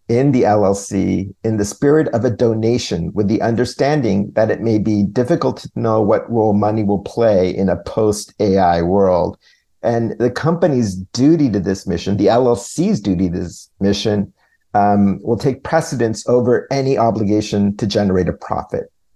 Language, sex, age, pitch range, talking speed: English, male, 50-69, 100-130 Hz, 165 wpm